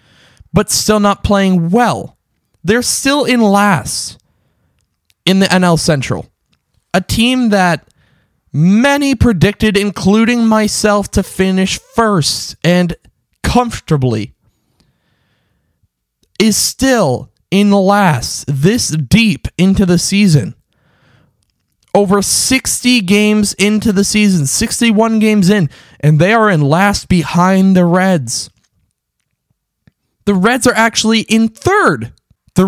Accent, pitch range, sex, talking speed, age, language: American, 150-215 Hz, male, 105 wpm, 20-39, English